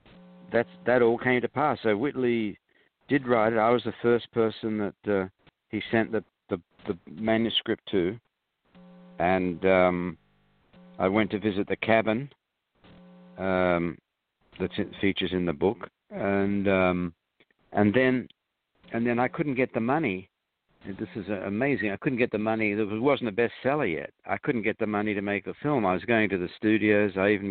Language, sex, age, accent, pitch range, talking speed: English, male, 60-79, Australian, 95-115 Hz, 175 wpm